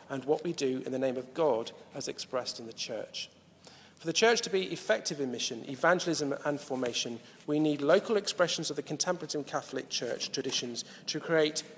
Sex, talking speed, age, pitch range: male, 190 wpm, 40-59, 135-185 Hz